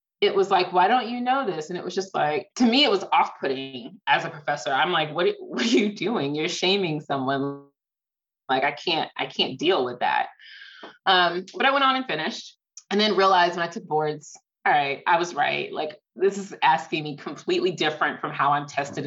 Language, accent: English, American